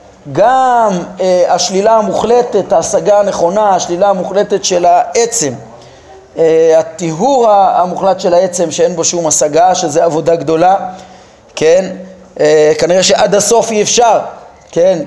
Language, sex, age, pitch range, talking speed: Hebrew, male, 30-49, 170-215 Hz, 120 wpm